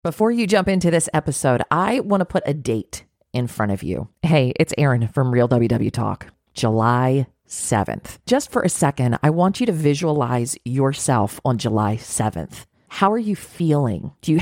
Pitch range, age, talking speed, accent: 130-185 Hz, 40-59, 185 wpm, American